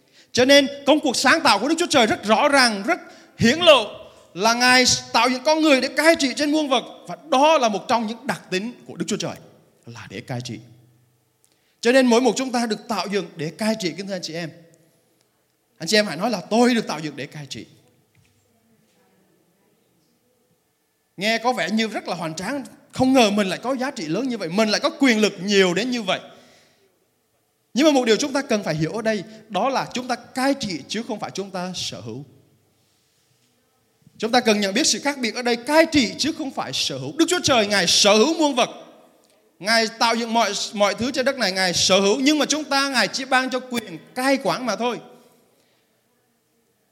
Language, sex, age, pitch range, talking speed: Vietnamese, male, 20-39, 175-260 Hz, 225 wpm